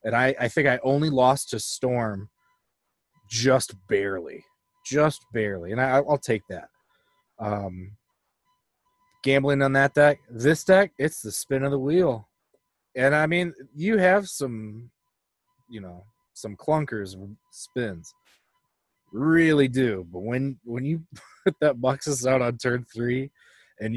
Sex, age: male, 20-39